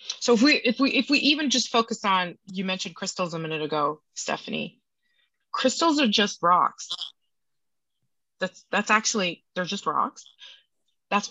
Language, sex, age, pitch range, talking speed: English, female, 30-49, 170-220 Hz, 155 wpm